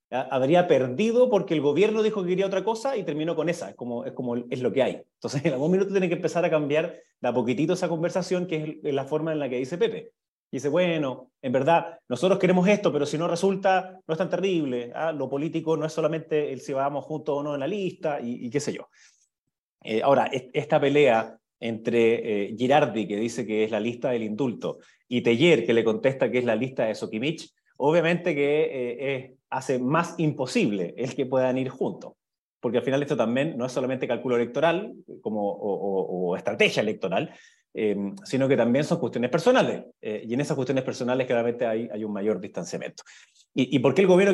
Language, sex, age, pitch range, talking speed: Spanish, male, 30-49, 125-175 Hz, 215 wpm